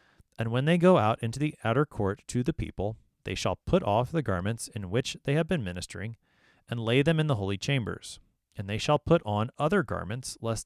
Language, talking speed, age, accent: English, 220 wpm, 30-49, American